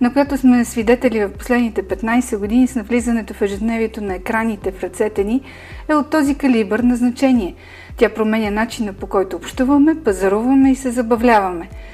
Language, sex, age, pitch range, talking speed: Bulgarian, female, 40-59, 205-260 Hz, 165 wpm